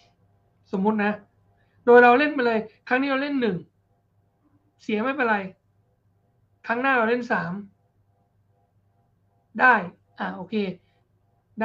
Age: 60-79